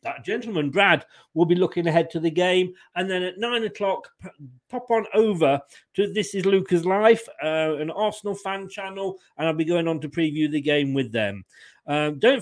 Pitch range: 155-205 Hz